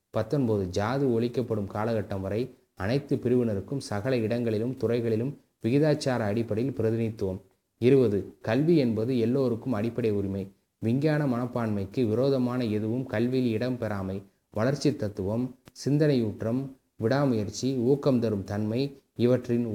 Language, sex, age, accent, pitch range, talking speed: Tamil, male, 20-39, native, 105-130 Hz, 100 wpm